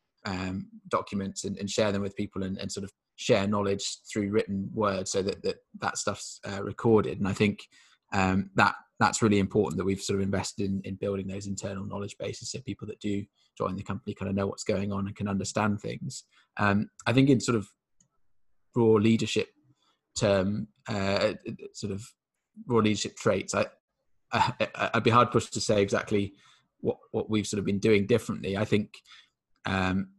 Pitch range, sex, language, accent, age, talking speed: 100-110 Hz, male, English, British, 20-39, 190 wpm